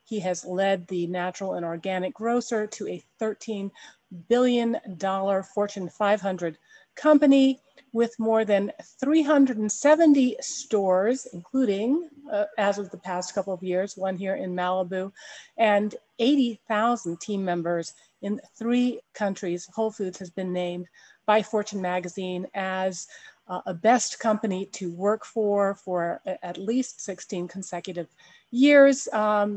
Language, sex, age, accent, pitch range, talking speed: English, female, 40-59, American, 190-235 Hz, 125 wpm